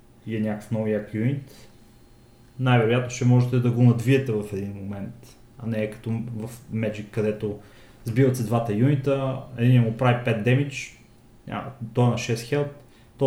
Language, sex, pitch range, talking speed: Bulgarian, male, 115-145 Hz, 165 wpm